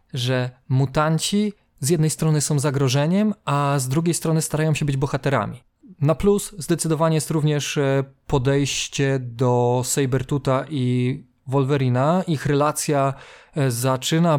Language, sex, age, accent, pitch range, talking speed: Polish, male, 20-39, native, 125-150 Hz, 115 wpm